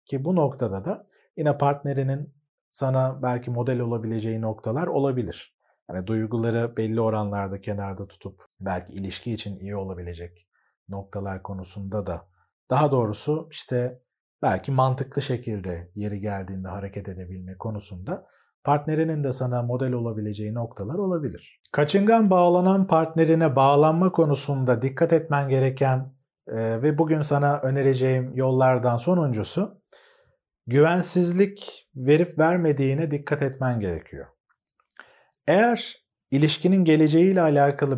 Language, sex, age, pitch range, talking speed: Turkish, male, 40-59, 115-150 Hz, 105 wpm